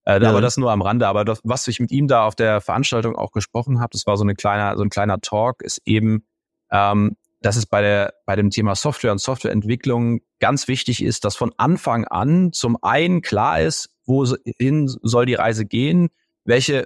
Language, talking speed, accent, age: German, 205 wpm, German, 30-49